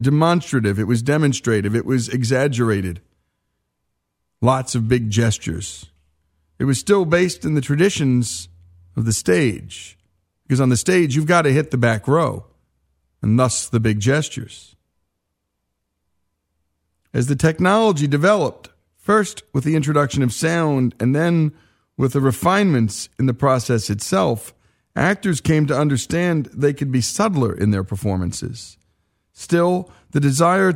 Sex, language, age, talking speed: male, English, 40-59, 135 wpm